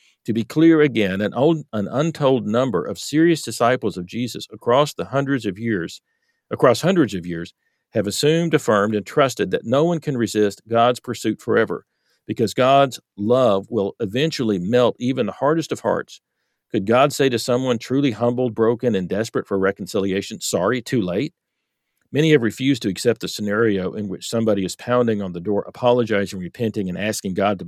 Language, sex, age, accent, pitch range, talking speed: English, male, 50-69, American, 105-125 Hz, 180 wpm